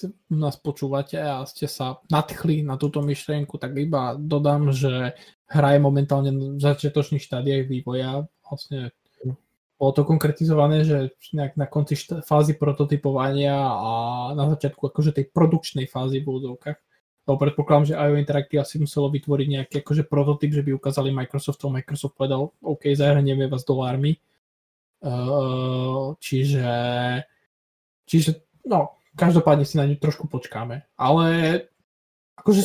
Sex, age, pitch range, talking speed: male, 20-39, 135-150 Hz, 140 wpm